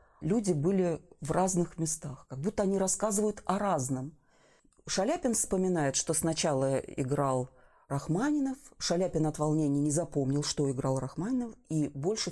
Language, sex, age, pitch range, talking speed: Russian, female, 40-59, 145-185 Hz, 130 wpm